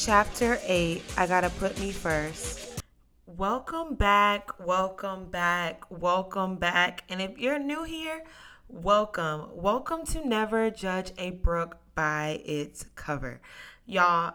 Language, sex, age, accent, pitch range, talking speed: English, female, 20-39, American, 165-225 Hz, 120 wpm